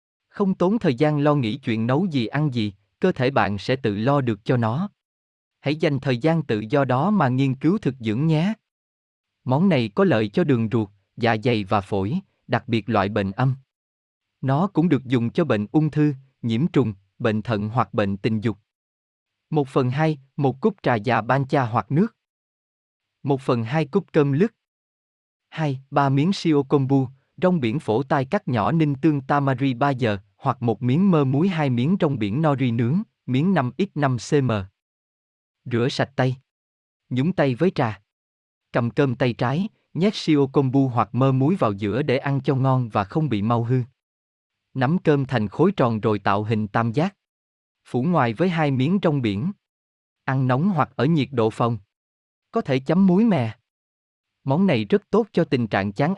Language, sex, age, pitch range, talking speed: Vietnamese, male, 20-39, 115-155 Hz, 190 wpm